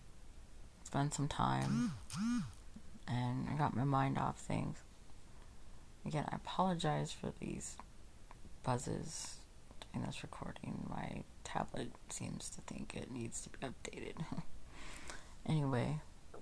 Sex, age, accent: female, 30-49, American